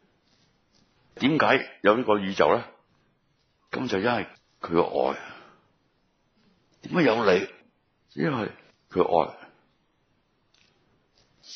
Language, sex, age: Chinese, male, 60-79